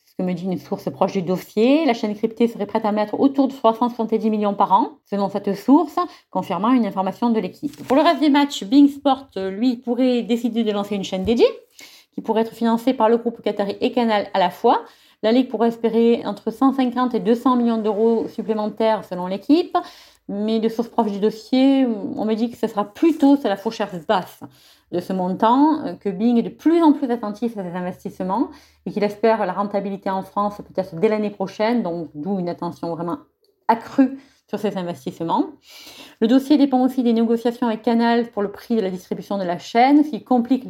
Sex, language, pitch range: female, French, 205-260 Hz